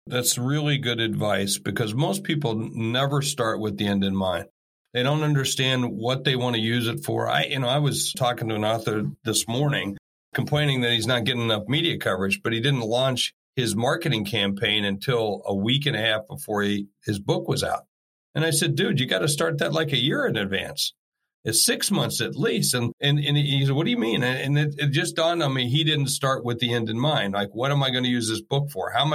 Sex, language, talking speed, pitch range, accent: male, English, 240 wpm, 120-155 Hz, American